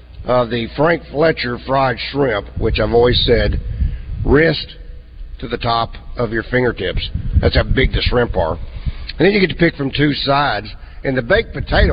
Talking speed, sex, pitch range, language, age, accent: 180 wpm, male, 95-145 Hz, English, 50-69, American